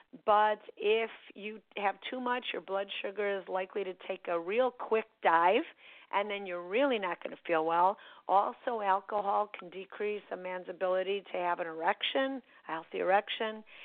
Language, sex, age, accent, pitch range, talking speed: English, female, 50-69, American, 195-255 Hz, 175 wpm